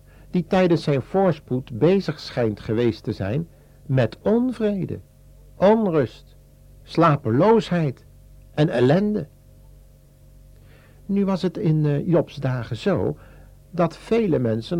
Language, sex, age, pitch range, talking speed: Dutch, male, 60-79, 115-160 Hz, 100 wpm